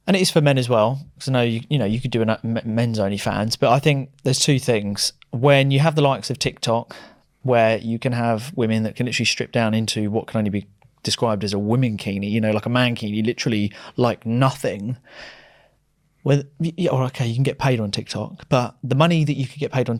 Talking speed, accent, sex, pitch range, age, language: 235 wpm, British, male, 120-150 Hz, 30-49, English